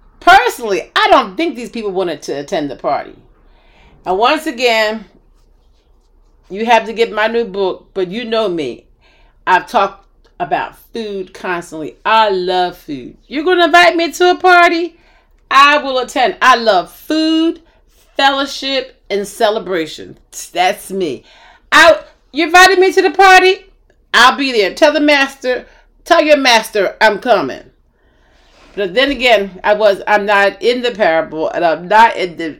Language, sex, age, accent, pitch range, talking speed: English, female, 40-59, American, 195-315 Hz, 160 wpm